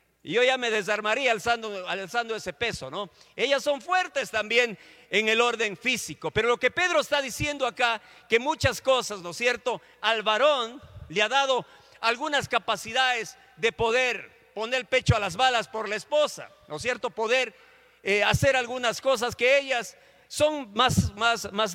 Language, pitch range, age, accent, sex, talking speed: Spanish, 210-265 Hz, 50-69, Mexican, male, 175 wpm